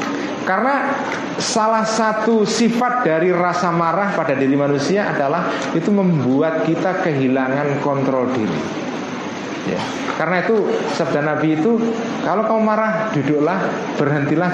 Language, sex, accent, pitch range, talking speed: Indonesian, male, native, 150-205 Hz, 115 wpm